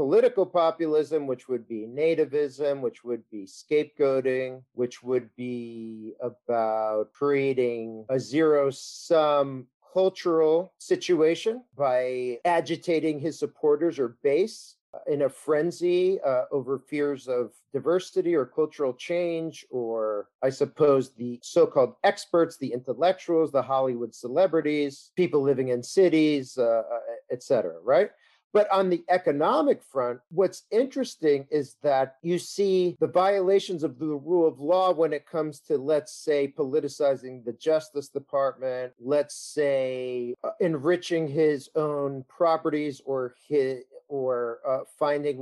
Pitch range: 125-160 Hz